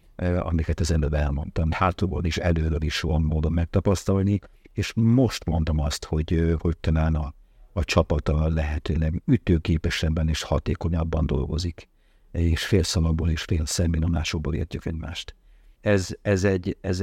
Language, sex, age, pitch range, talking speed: Hungarian, male, 60-79, 80-95 Hz, 125 wpm